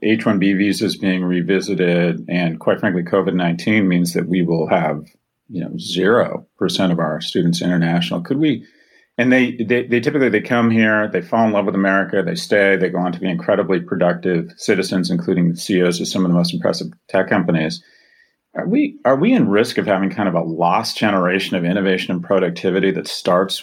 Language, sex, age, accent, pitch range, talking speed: English, male, 40-59, American, 90-110 Hz, 195 wpm